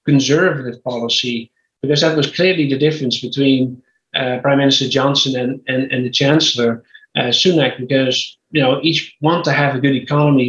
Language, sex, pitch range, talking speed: English, male, 135-150 Hz, 170 wpm